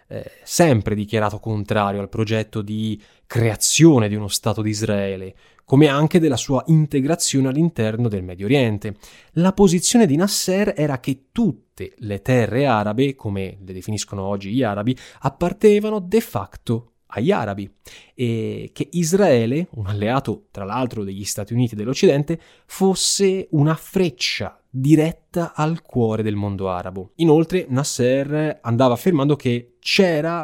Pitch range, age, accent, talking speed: 110-155 Hz, 20-39, native, 135 wpm